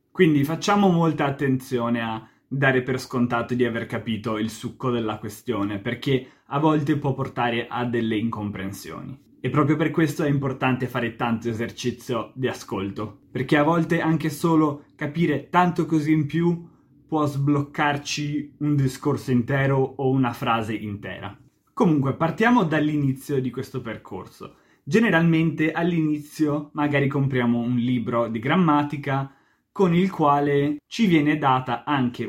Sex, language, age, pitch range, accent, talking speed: male, Italian, 20-39, 120-150 Hz, native, 140 wpm